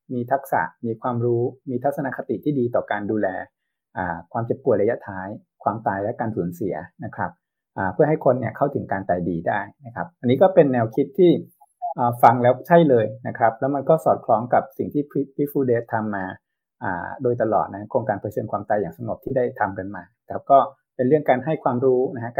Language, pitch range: Thai, 110-140 Hz